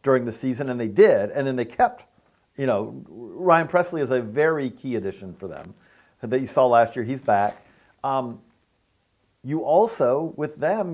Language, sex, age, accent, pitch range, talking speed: English, male, 50-69, American, 115-150 Hz, 180 wpm